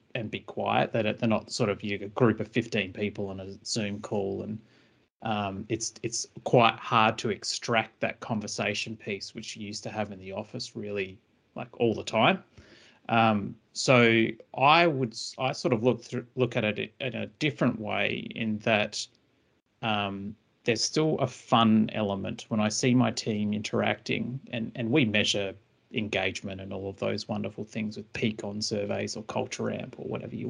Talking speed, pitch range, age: 185 wpm, 105-120 Hz, 30-49